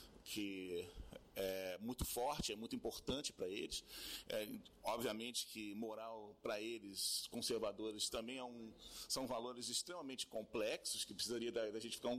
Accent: Brazilian